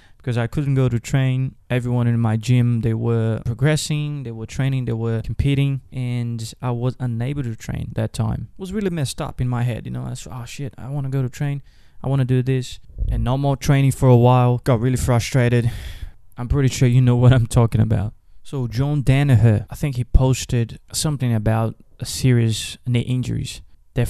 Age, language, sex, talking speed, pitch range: 20-39, English, male, 210 wpm, 115-135 Hz